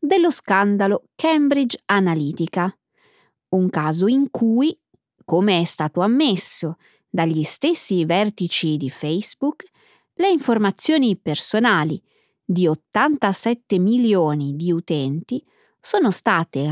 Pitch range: 165-245 Hz